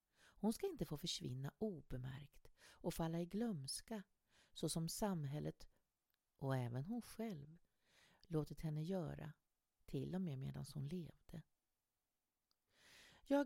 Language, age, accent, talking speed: Swedish, 40-59, native, 120 wpm